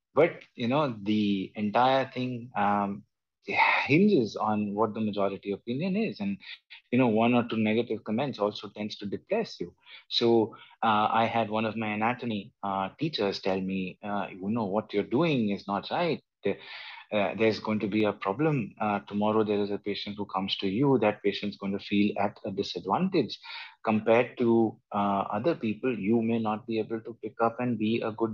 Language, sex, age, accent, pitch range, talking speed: English, male, 30-49, Indian, 100-125 Hz, 190 wpm